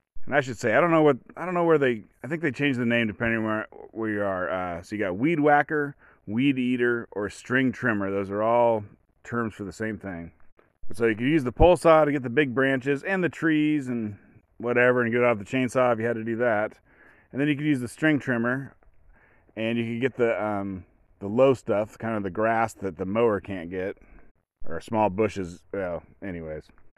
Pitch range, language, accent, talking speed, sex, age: 105-135 Hz, English, American, 225 wpm, male, 30-49